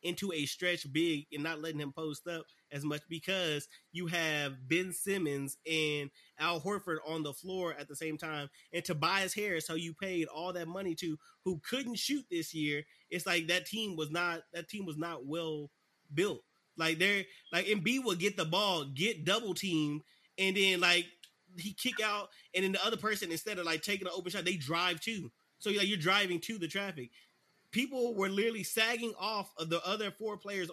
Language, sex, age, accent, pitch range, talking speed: English, male, 20-39, American, 160-200 Hz, 205 wpm